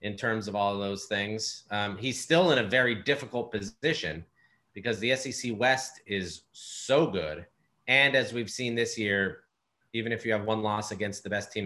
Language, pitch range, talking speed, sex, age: English, 100-125 Hz, 195 wpm, male, 30-49